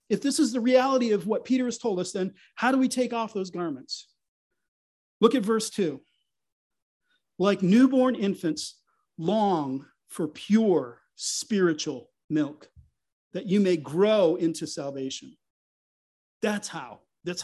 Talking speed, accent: 140 wpm, American